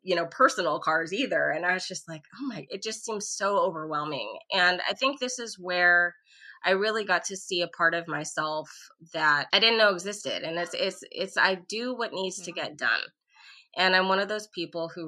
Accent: American